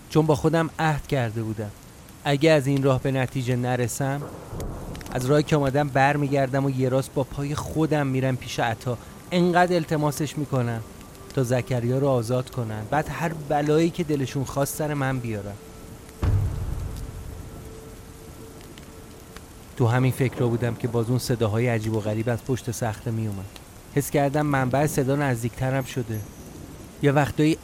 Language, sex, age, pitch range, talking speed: Persian, male, 30-49, 115-145 Hz, 145 wpm